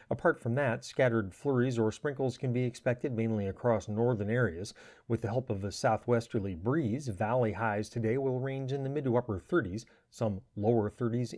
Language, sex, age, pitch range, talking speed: English, male, 40-59, 110-125 Hz, 185 wpm